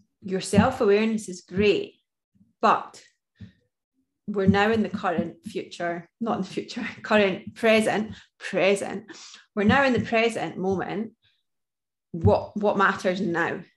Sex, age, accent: female, 20-39, British